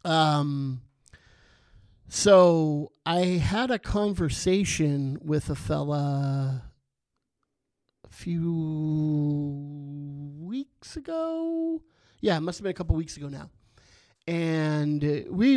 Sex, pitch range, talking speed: male, 140-160 Hz, 95 wpm